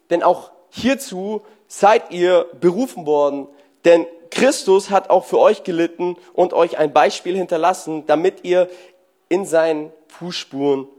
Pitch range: 180-240 Hz